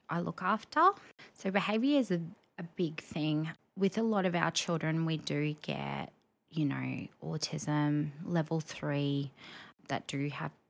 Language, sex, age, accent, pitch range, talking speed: English, female, 20-39, Australian, 150-175 Hz, 150 wpm